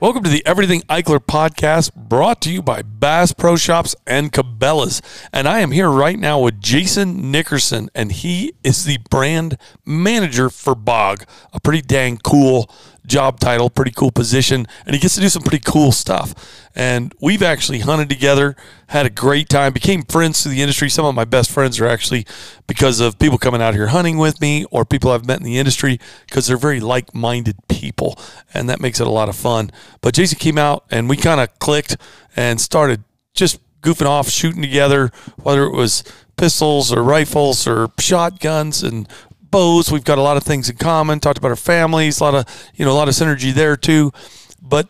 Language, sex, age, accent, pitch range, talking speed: English, male, 40-59, American, 125-155 Hz, 200 wpm